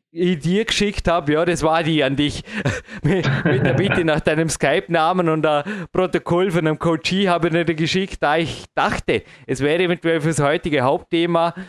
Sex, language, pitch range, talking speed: male, German, 130-170 Hz, 190 wpm